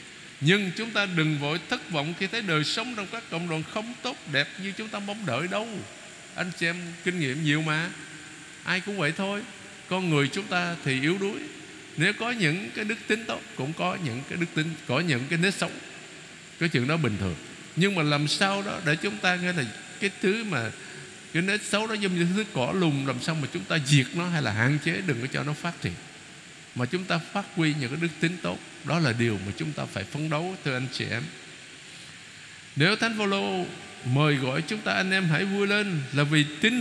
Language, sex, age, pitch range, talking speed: Vietnamese, male, 60-79, 150-200 Hz, 230 wpm